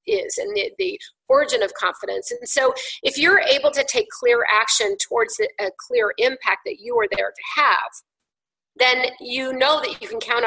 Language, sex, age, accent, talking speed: English, female, 40-59, American, 195 wpm